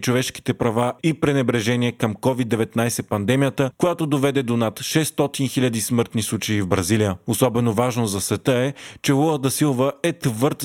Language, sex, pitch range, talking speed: Bulgarian, male, 115-140 Hz, 160 wpm